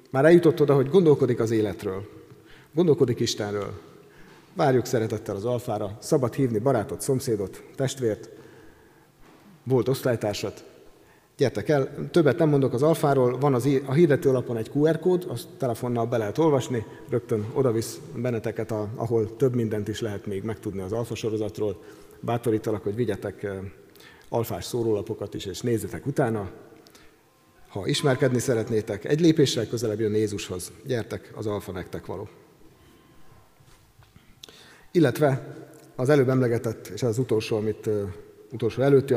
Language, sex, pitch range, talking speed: Hungarian, male, 110-140 Hz, 135 wpm